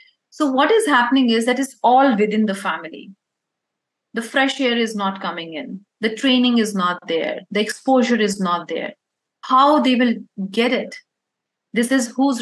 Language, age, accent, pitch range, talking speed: English, 30-49, Indian, 205-250 Hz, 175 wpm